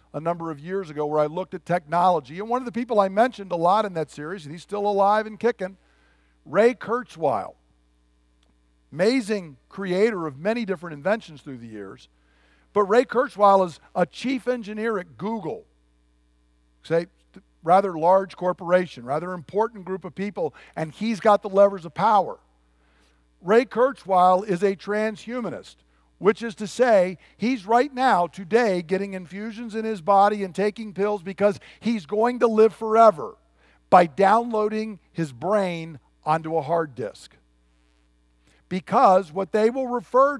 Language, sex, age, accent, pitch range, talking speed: English, male, 50-69, American, 150-220 Hz, 155 wpm